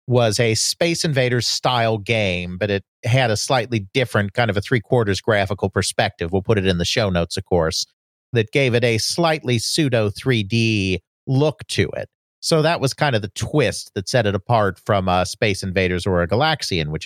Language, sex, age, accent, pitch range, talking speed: English, male, 50-69, American, 100-140 Hz, 185 wpm